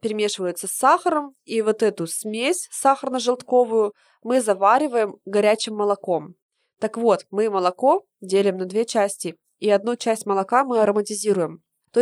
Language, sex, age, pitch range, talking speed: Russian, female, 20-39, 185-230 Hz, 135 wpm